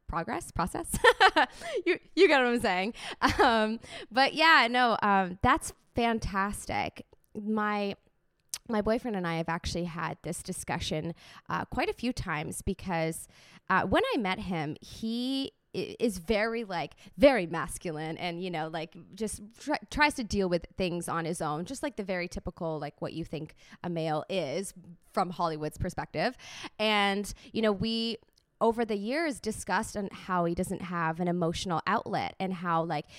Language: English